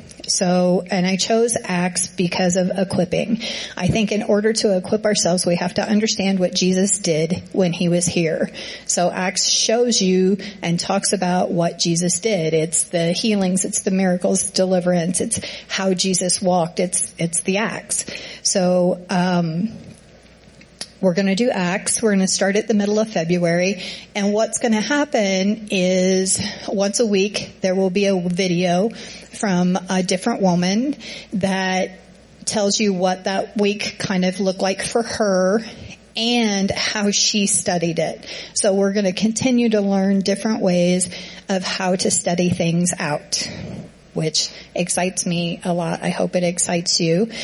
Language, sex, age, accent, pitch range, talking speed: English, female, 40-59, American, 180-205 Hz, 160 wpm